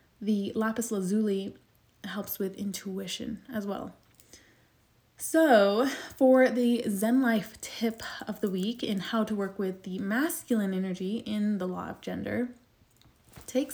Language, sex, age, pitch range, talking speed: English, female, 20-39, 195-235 Hz, 135 wpm